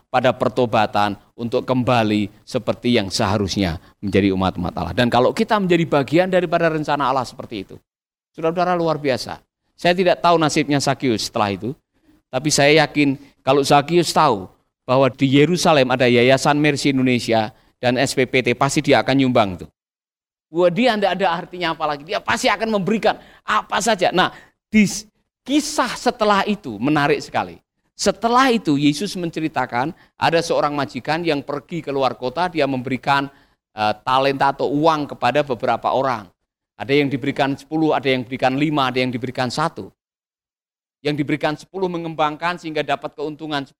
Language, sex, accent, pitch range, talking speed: Indonesian, male, native, 130-180 Hz, 150 wpm